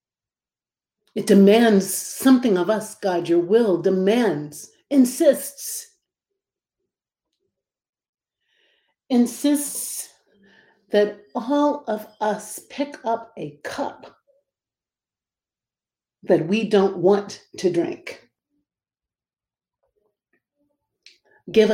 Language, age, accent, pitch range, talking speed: English, 50-69, American, 190-255 Hz, 70 wpm